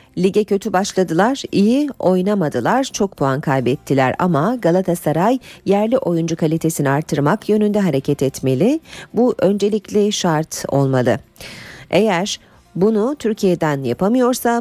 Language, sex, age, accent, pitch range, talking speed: Turkish, female, 40-59, native, 155-210 Hz, 105 wpm